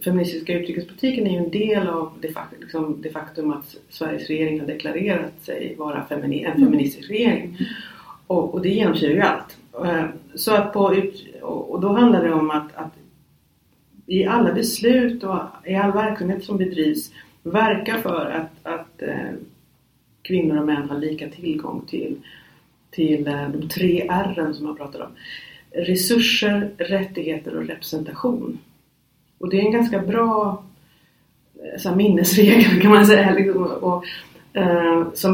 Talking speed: 145 wpm